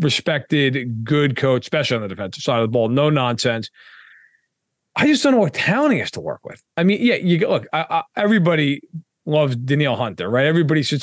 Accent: American